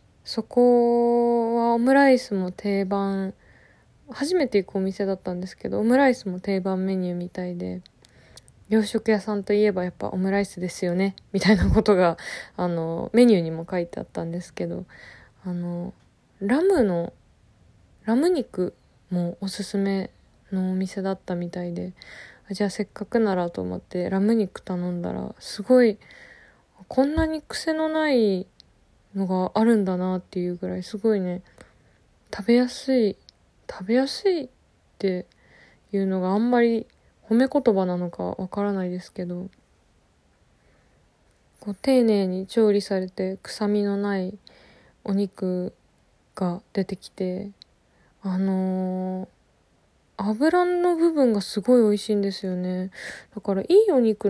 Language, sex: Japanese, female